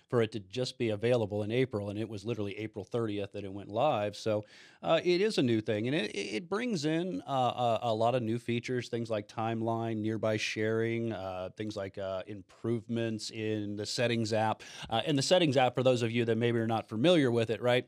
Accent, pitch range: American, 105-130 Hz